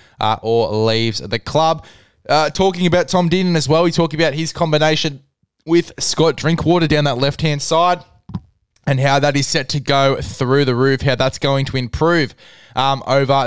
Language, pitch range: English, 125-155 Hz